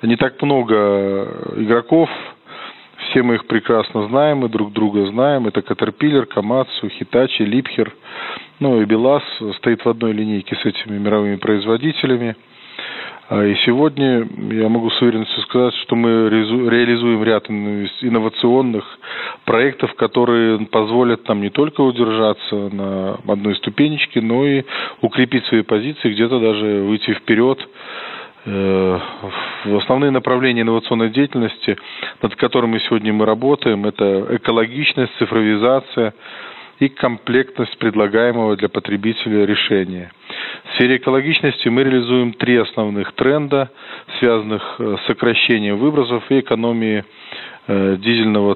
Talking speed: 115 wpm